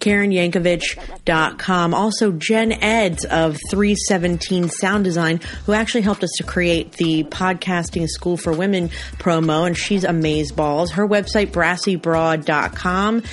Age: 30-49